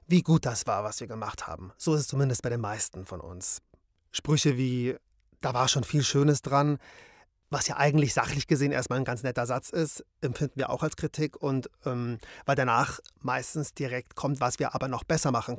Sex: male